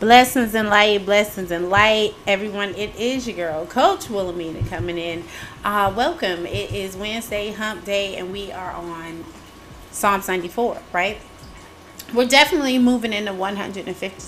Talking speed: 145 wpm